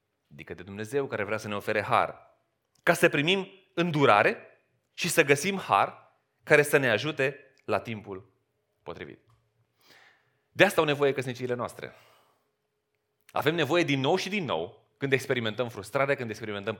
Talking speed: 150 wpm